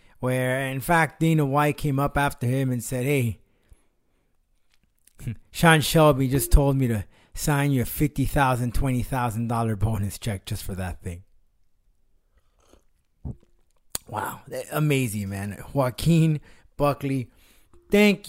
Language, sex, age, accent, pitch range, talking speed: English, male, 20-39, American, 115-150 Hz, 125 wpm